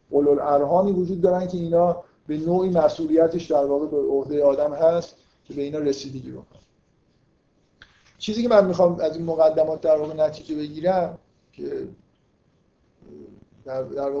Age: 50-69